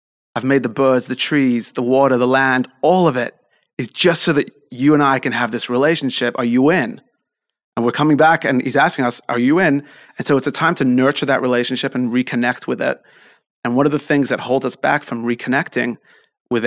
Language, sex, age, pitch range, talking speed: English, male, 30-49, 120-140 Hz, 225 wpm